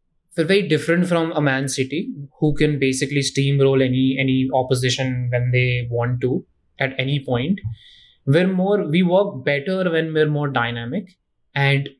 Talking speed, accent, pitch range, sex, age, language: 155 wpm, Indian, 130-155 Hz, male, 20-39, English